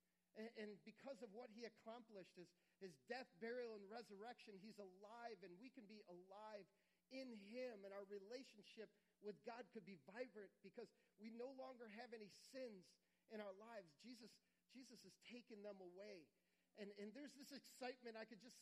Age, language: 40-59, English